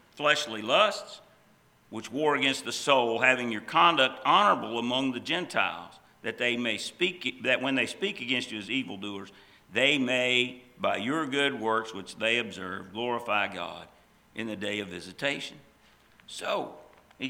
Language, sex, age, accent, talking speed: English, male, 50-69, American, 155 wpm